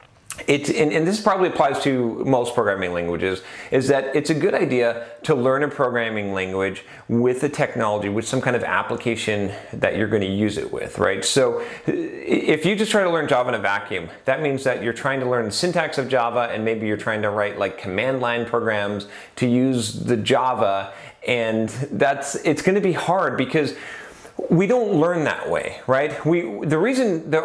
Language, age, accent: English, 30-49, American